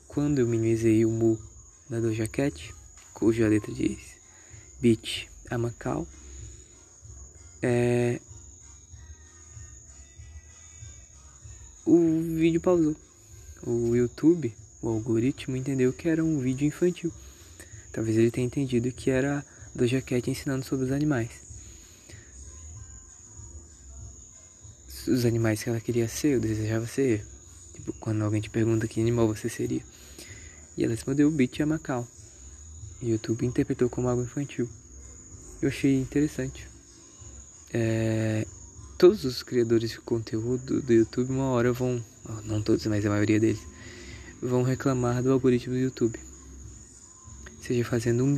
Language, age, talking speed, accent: Portuguese, 20-39, 125 wpm, Brazilian